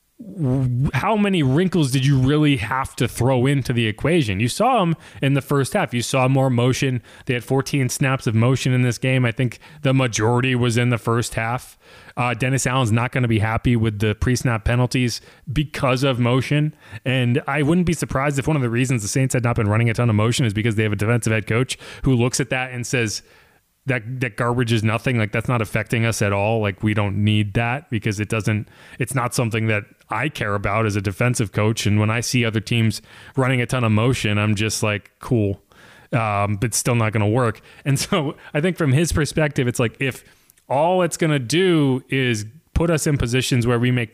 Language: English